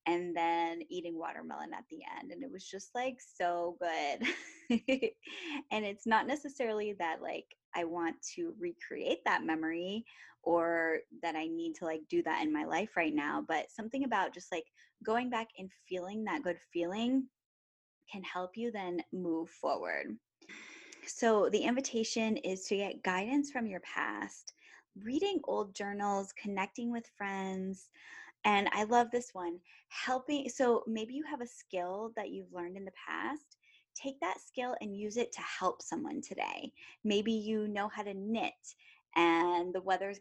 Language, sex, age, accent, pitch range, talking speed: English, female, 10-29, American, 180-255 Hz, 165 wpm